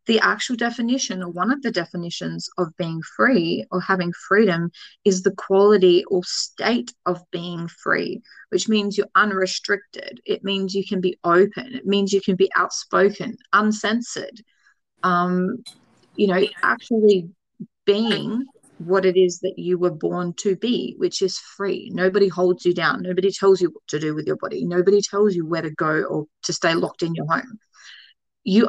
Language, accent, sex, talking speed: English, Australian, female, 175 wpm